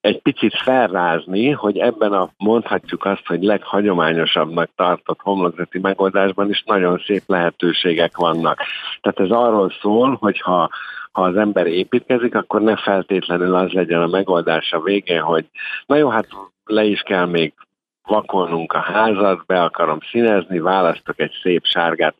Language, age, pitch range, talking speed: Hungarian, 50-69, 85-110 Hz, 150 wpm